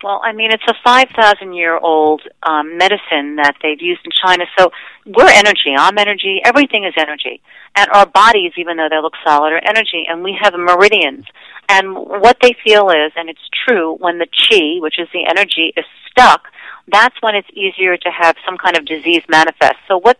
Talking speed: 190 wpm